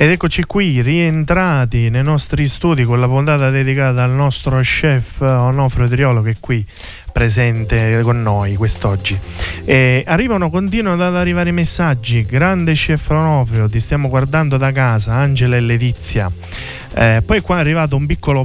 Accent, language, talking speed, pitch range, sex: native, Italian, 155 wpm, 120-150 Hz, male